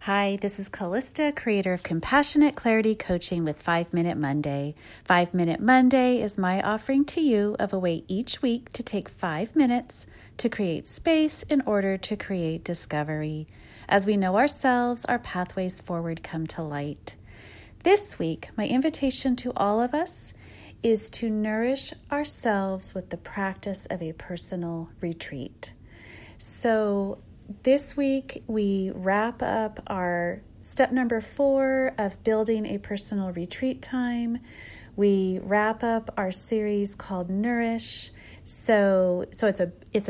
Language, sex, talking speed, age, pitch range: English, female, 140 wpm, 40-59, 175-230 Hz